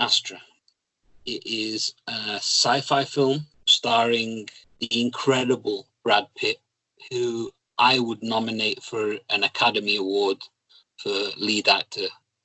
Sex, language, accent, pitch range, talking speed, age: male, English, British, 120-160 Hz, 105 wpm, 30-49